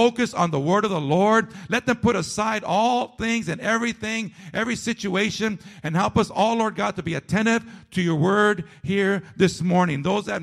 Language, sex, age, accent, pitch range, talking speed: English, male, 50-69, American, 145-210 Hz, 195 wpm